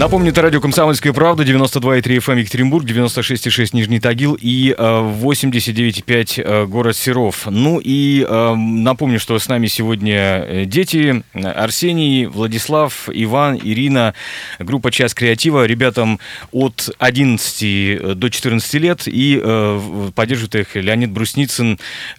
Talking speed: 110 wpm